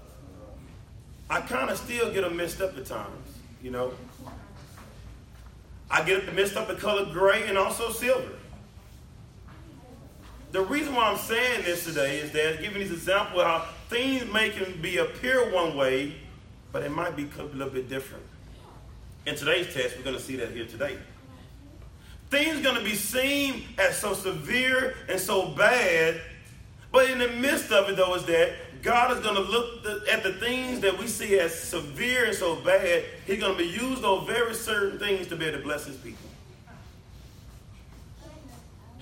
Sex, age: male, 30-49